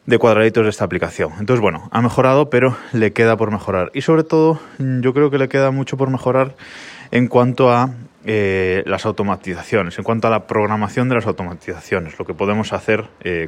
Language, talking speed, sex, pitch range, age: Spanish, 195 wpm, male, 110-155 Hz, 20-39